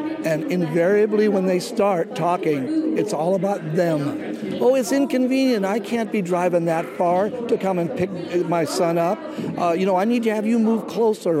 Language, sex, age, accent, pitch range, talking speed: English, male, 50-69, American, 150-185 Hz, 190 wpm